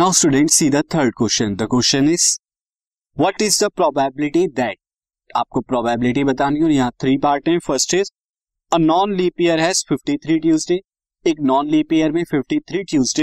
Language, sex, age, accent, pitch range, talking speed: Hindi, male, 20-39, native, 140-190 Hz, 90 wpm